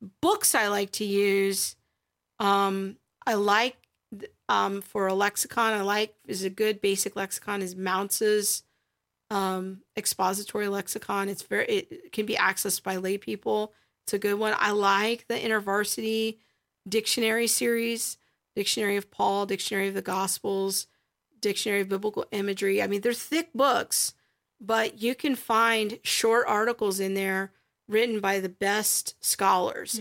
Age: 40-59